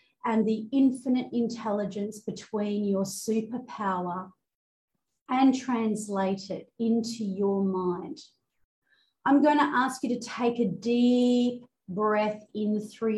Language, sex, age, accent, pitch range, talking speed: English, female, 40-59, Australian, 200-245 Hz, 115 wpm